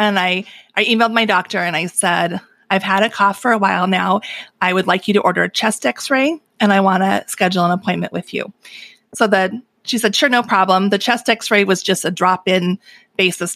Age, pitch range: 30-49, 180-220 Hz